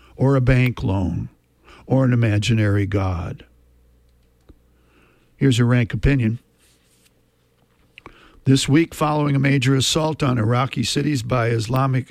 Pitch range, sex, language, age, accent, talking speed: 110-140 Hz, male, English, 60-79, American, 115 wpm